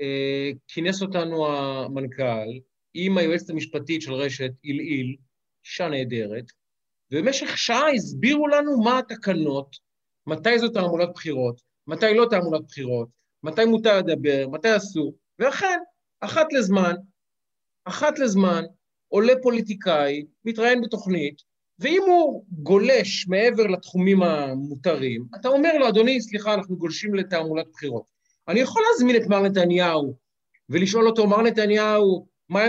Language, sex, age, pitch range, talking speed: Hebrew, male, 40-59, 170-240 Hz, 120 wpm